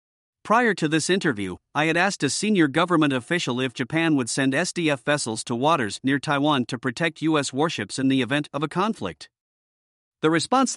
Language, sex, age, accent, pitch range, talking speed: English, male, 50-69, American, 130-170 Hz, 185 wpm